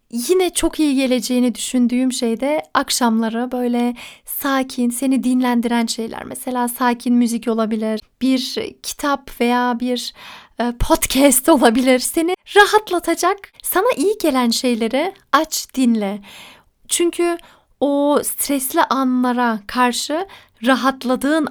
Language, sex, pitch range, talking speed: Turkish, female, 235-285 Hz, 100 wpm